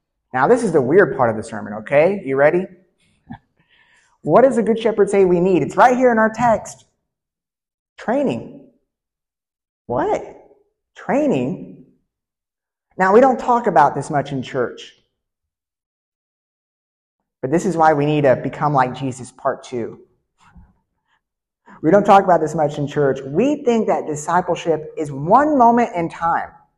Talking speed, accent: 150 wpm, American